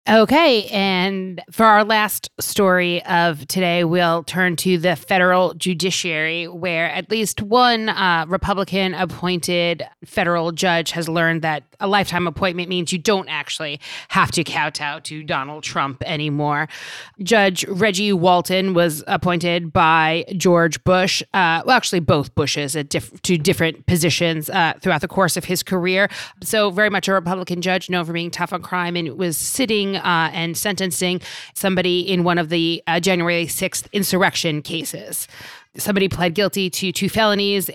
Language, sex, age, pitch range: English, female, 30-49, 165-190 Hz